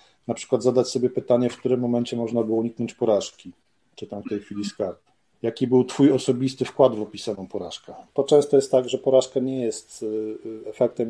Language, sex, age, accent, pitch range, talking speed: Polish, male, 40-59, native, 110-130 Hz, 190 wpm